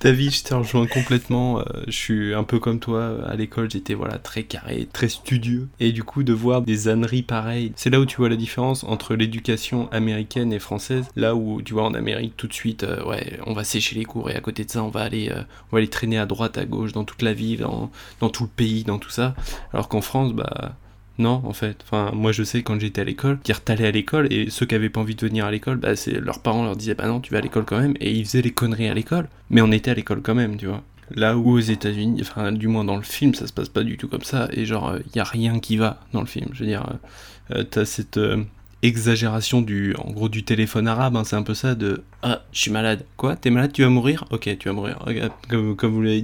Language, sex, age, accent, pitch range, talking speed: French, male, 20-39, French, 110-125 Hz, 280 wpm